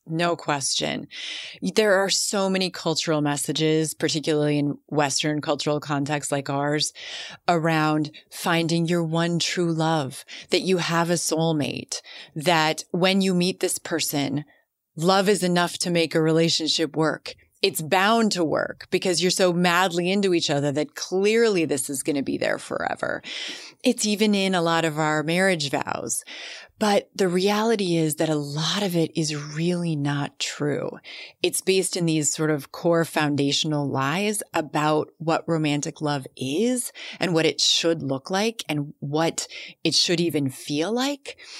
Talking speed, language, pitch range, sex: 155 wpm, English, 155-185 Hz, female